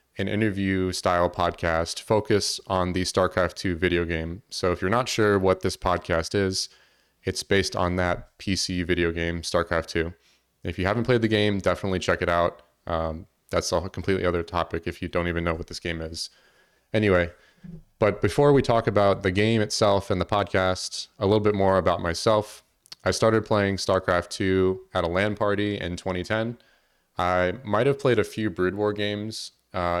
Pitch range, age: 85-105 Hz, 30-49